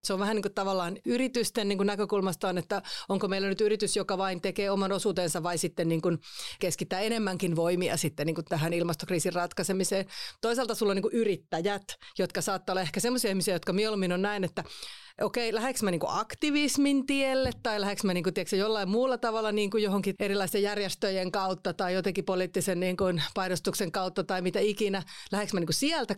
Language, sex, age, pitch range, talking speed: Finnish, female, 30-49, 185-210 Hz, 160 wpm